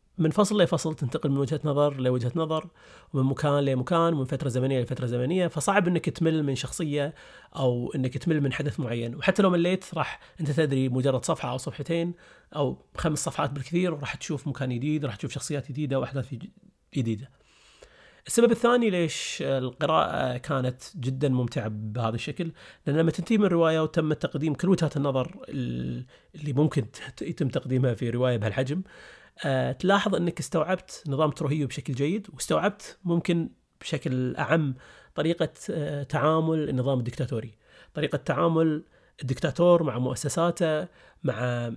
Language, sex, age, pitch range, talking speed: Arabic, male, 30-49, 130-165 Hz, 140 wpm